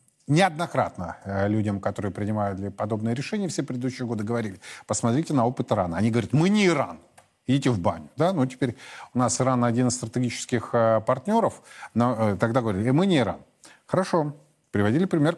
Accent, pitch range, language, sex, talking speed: native, 105-135 Hz, Russian, male, 165 wpm